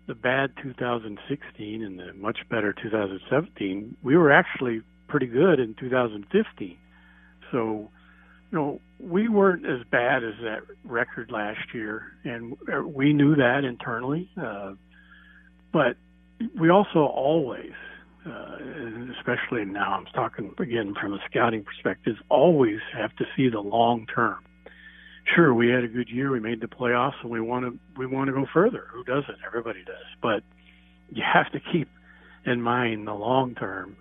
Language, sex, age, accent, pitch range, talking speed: English, male, 60-79, American, 100-130 Hz, 155 wpm